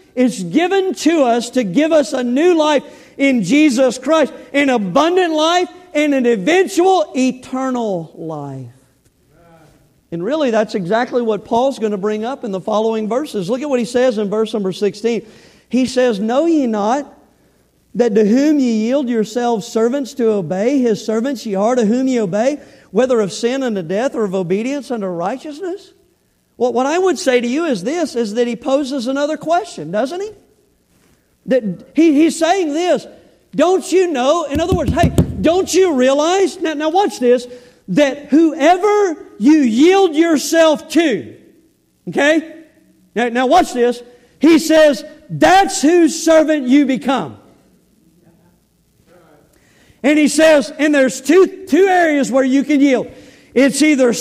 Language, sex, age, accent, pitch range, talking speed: English, male, 50-69, American, 235-315 Hz, 160 wpm